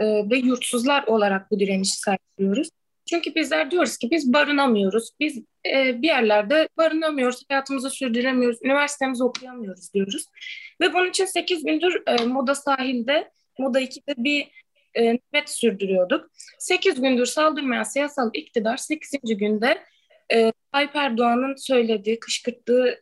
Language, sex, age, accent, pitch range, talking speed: Turkish, female, 20-39, native, 230-300 Hz, 125 wpm